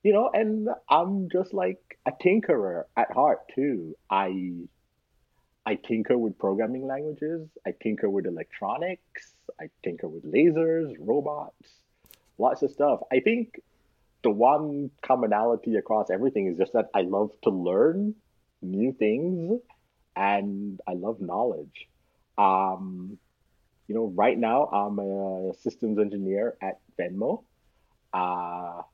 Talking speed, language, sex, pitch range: 125 wpm, English, male, 95-140 Hz